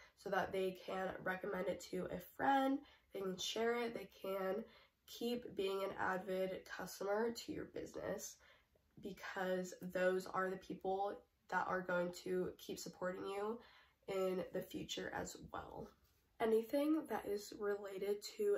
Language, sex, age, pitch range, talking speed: English, female, 10-29, 185-215 Hz, 145 wpm